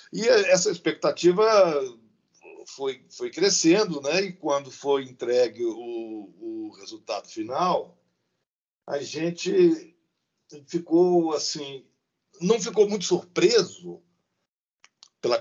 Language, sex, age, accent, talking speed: Portuguese, male, 60-79, Brazilian, 95 wpm